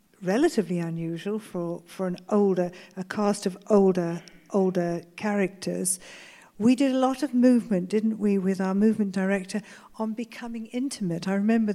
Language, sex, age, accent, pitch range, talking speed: English, female, 50-69, British, 190-220 Hz, 150 wpm